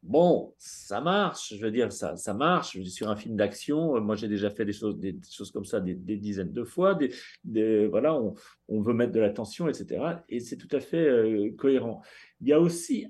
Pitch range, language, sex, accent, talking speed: 130-180 Hz, French, male, French, 235 wpm